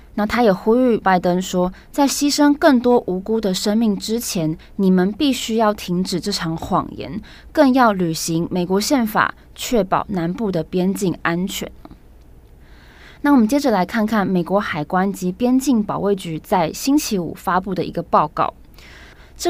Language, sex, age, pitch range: Chinese, female, 20-39, 180-230 Hz